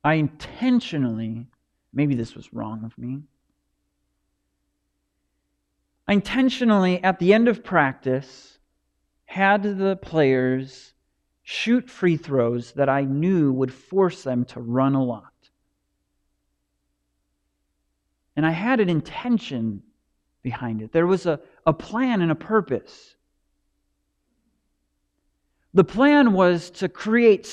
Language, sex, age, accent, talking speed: English, male, 40-59, American, 110 wpm